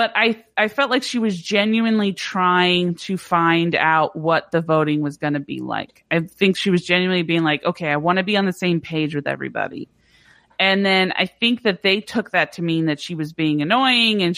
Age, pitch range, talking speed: 30-49, 170-215 Hz, 225 wpm